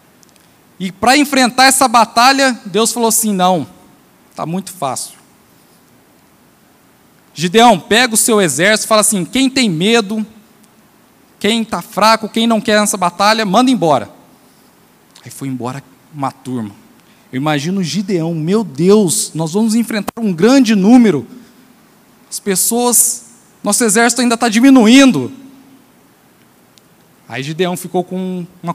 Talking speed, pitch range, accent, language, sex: 125 wpm, 185-245 Hz, Brazilian, Portuguese, male